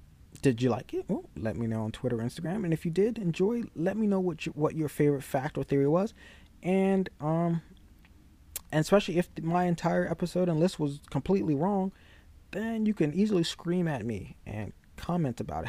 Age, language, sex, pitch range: 20-39, English, male, 110-165 Hz